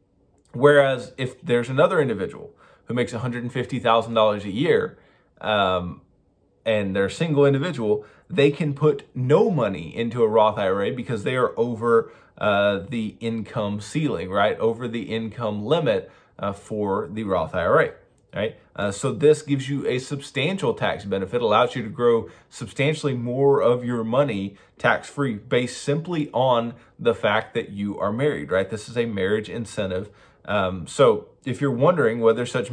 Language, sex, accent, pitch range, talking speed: English, male, American, 105-135 Hz, 155 wpm